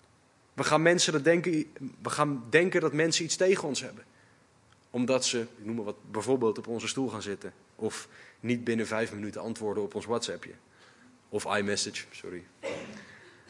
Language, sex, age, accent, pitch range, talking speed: Dutch, male, 20-39, Dutch, 120-155 Hz, 165 wpm